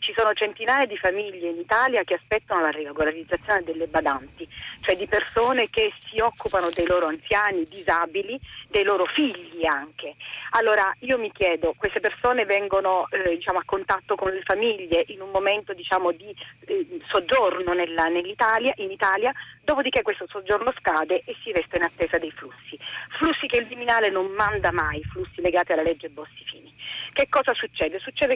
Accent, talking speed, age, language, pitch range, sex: native, 165 wpm, 40-59, Italian, 190-310 Hz, female